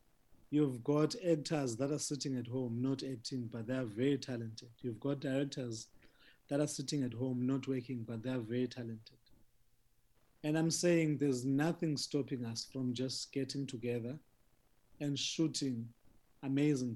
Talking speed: 150 wpm